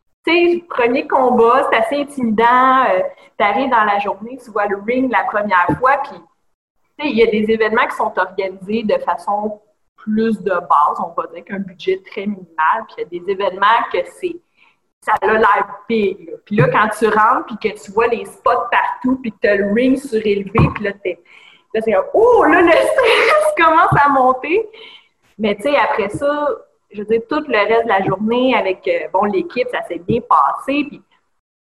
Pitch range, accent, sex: 210-335 Hz, Canadian, female